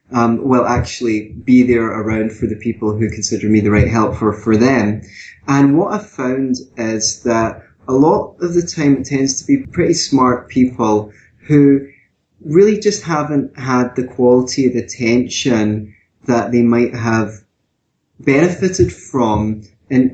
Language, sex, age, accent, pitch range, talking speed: English, male, 20-39, British, 110-130 Hz, 160 wpm